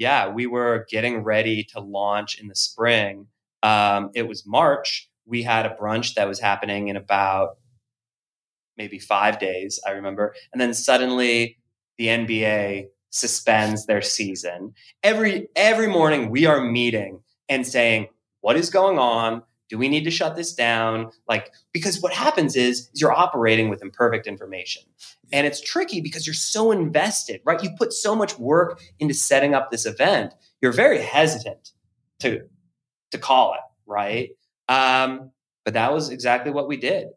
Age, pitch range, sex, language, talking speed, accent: 20-39, 105-145 Hz, male, English, 160 wpm, American